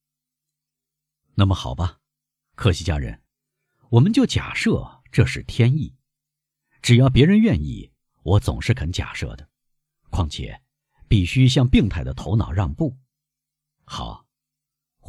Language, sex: Chinese, male